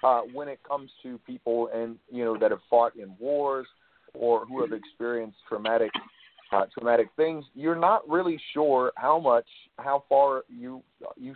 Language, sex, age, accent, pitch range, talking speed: English, male, 40-59, American, 110-150 Hz, 170 wpm